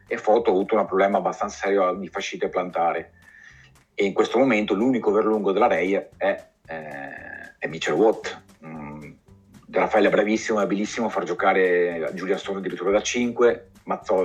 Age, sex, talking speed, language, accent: 40-59, male, 170 wpm, Italian, native